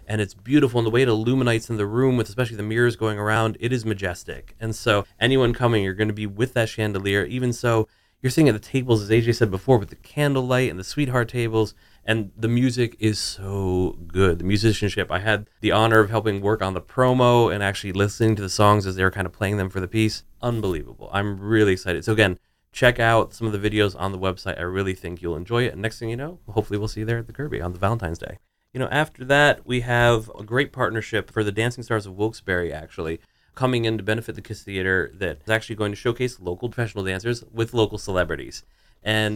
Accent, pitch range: American, 100-120 Hz